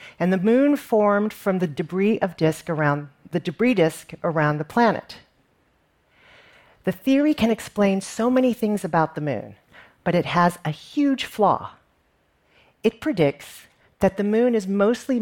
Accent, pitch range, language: American, 160-225 Hz, English